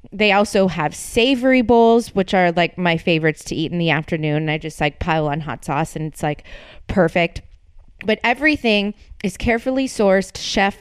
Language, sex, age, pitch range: English, female, 20-39, 175-220 Hz